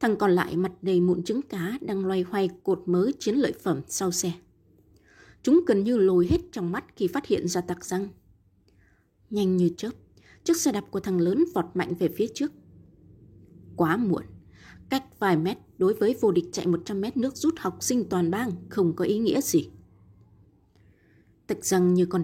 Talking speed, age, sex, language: 195 wpm, 20-39, female, Vietnamese